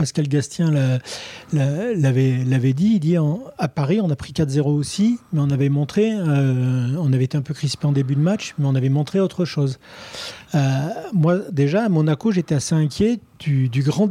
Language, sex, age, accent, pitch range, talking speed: French, male, 40-59, French, 140-180 Hz, 190 wpm